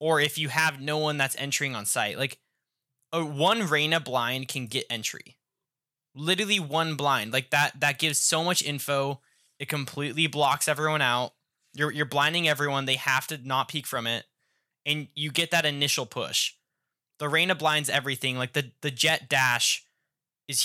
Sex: male